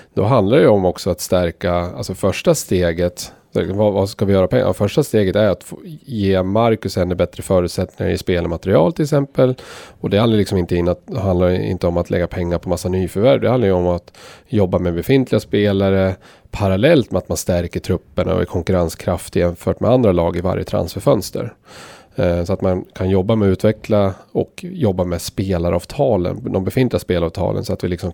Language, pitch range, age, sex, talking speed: Swedish, 90-110 Hz, 30-49, male, 190 wpm